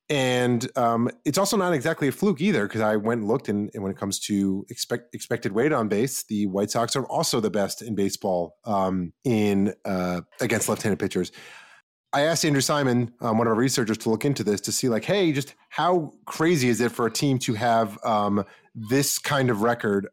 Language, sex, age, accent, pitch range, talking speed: English, male, 30-49, American, 105-130 Hz, 215 wpm